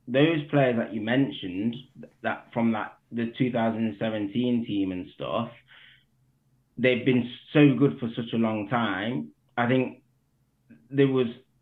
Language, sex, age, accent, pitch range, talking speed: English, male, 20-39, British, 115-135 Hz, 150 wpm